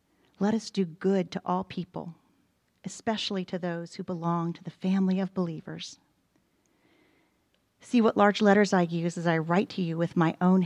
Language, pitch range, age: English, 165-195 Hz, 40-59